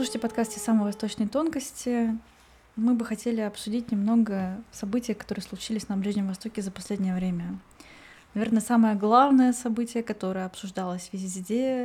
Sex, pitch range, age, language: female, 195-225 Hz, 20-39, Russian